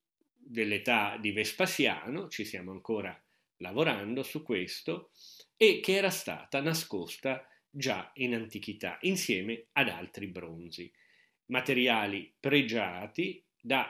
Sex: male